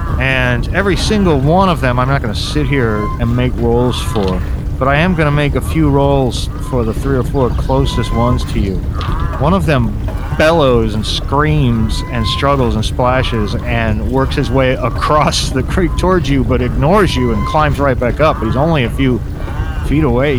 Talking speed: 195 wpm